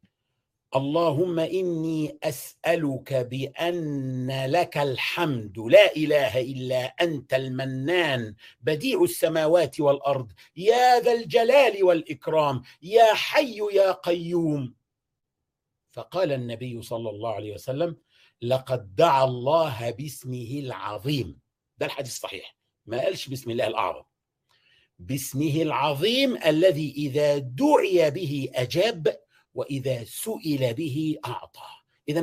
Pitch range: 130-170 Hz